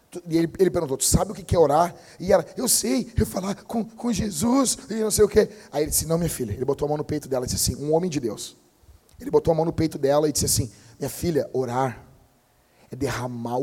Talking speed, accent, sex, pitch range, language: 260 wpm, Brazilian, male, 125-175 Hz, Portuguese